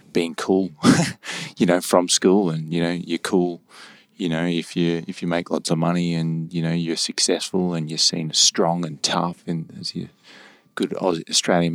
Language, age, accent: English, 20-39, Australian